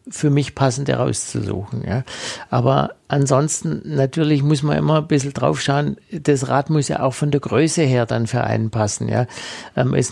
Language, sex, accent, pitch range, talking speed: German, male, German, 130-155 Hz, 165 wpm